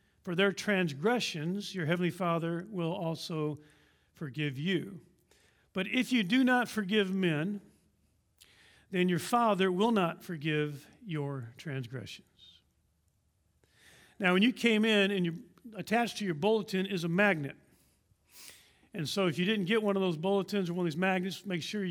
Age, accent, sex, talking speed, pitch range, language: 50-69, American, male, 155 wpm, 165-205 Hz, English